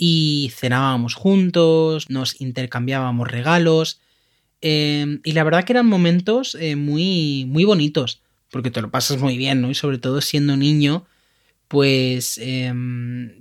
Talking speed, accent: 140 wpm, Spanish